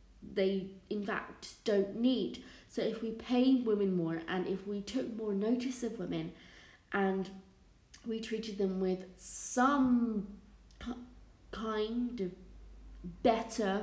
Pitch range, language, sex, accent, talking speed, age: 190-225 Hz, English, female, British, 120 wpm, 30-49